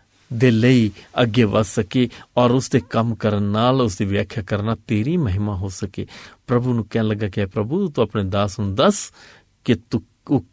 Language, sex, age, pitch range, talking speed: Punjabi, male, 50-69, 105-135 Hz, 175 wpm